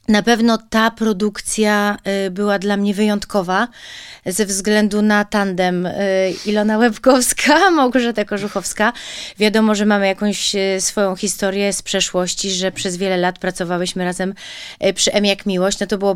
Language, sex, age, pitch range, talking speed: Polish, female, 30-49, 190-245 Hz, 135 wpm